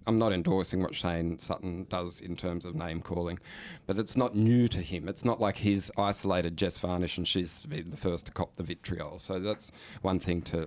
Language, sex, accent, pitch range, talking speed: English, male, Australian, 85-100 Hz, 220 wpm